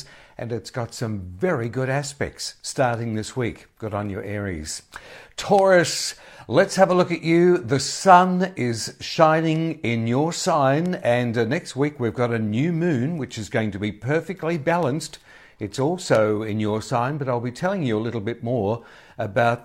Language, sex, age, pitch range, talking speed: English, male, 60-79, 110-160 Hz, 180 wpm